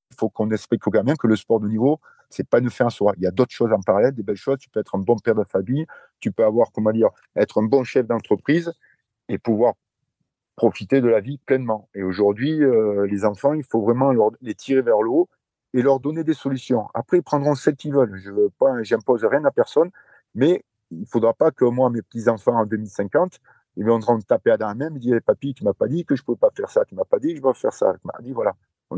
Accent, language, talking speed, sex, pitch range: French, French, 265 wpm, male, 110-140 Hz